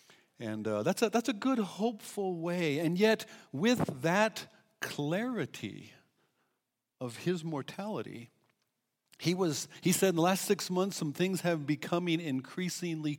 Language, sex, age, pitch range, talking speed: English, male, 60-79, 130-185 Hz, 140 wpm